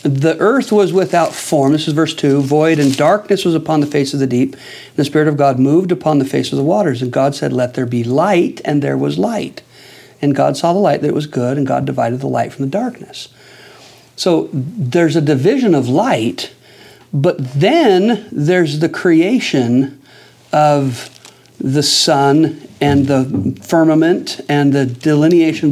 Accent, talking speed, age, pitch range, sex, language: American, 185 wpm, 50-69, 130-165 Hz, male, English